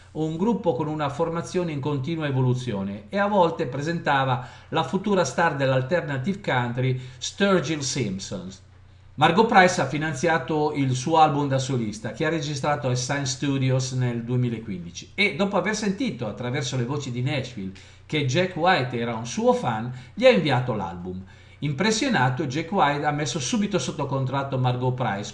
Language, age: Italian, 50-69